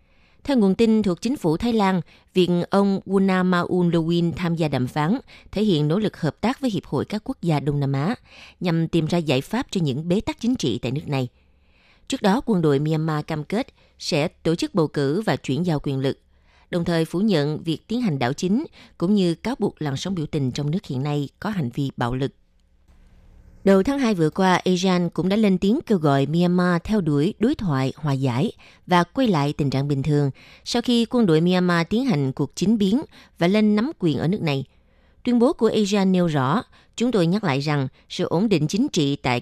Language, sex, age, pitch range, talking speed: Vietnamese, female, 20-39, 140-195 Hz, 225 wpm